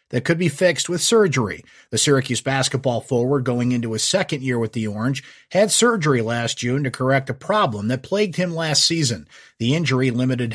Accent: American